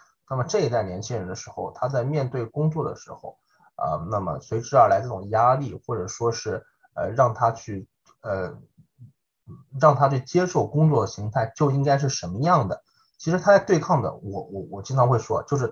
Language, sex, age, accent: Chinese, male, 20-39, native